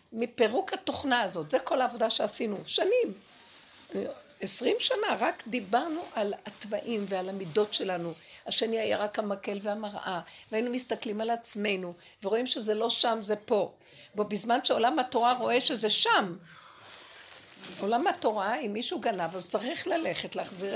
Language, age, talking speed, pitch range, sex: Hebrew, 50-69, 135 wpm, 205-275 Hz, female